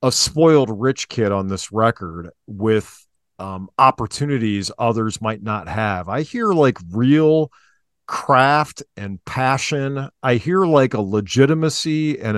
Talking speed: 130 wpm